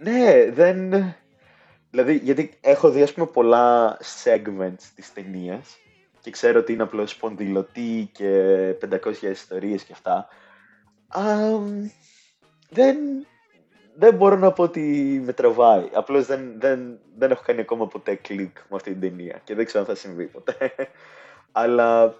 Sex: male